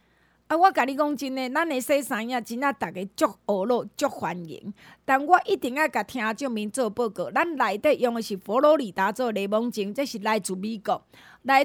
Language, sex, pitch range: Chinese, female, 210-285 Hz